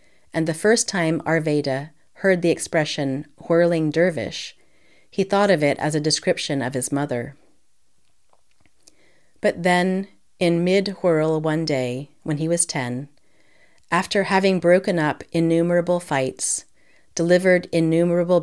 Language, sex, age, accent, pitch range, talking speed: English, female, 40-59, American, 140-175 Hz, 125 wpm